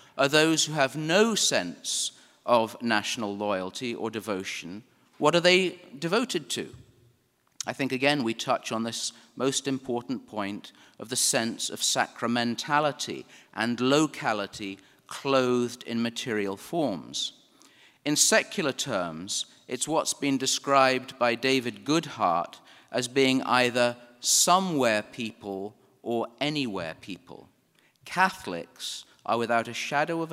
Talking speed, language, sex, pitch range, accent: 120 wpm, English, male, 120-145 Hz, British